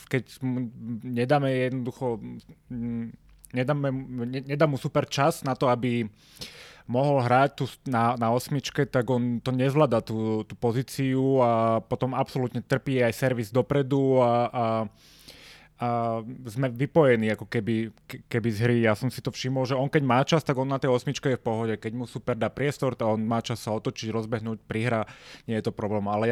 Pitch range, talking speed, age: 110-130 Hz, 180 wpm, 20-39